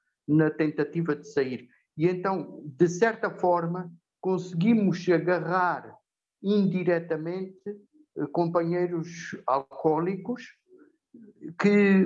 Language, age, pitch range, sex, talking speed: Portuguese, 50-69, 150-190 Hz, male, 75 wpm